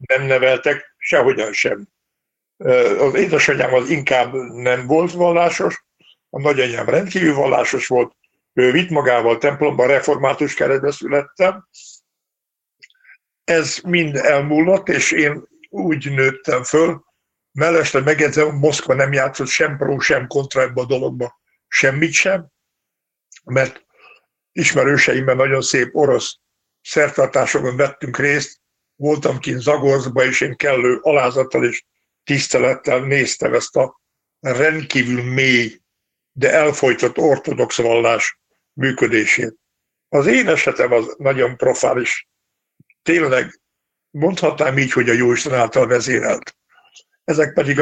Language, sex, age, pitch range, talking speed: Hungarian, male, 60-79, 130-155 Hz, 110 wpm